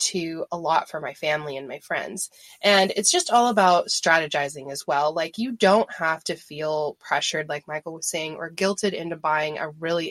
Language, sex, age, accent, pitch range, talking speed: English, female, 20-39, American, 165-200 Hz, 200 wpm